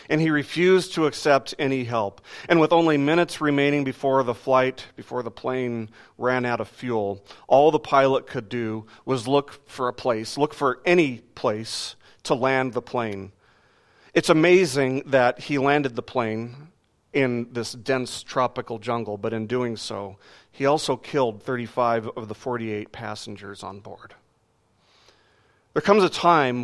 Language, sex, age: English, male, 40-59